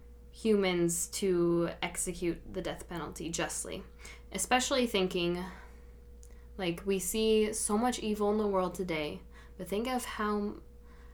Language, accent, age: English, American, 10-29